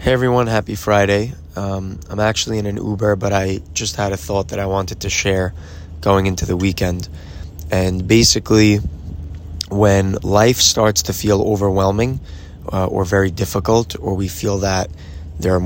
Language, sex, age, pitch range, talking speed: English, male, 20-39, 90-105 Hz, 165 wpm